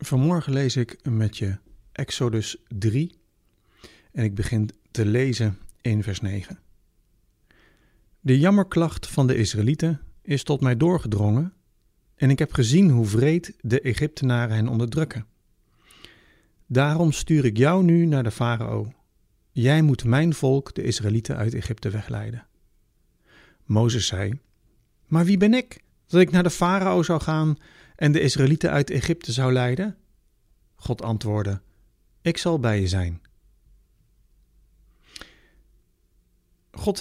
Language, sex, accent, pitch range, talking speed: Dutch, male, Dutch, 110-155 Hz, 130 wpm